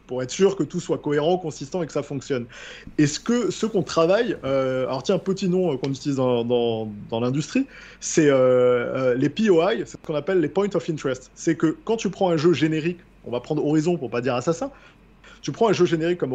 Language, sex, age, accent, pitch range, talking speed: French, male, 20-39, French, 145-185 Hz, 230 wpm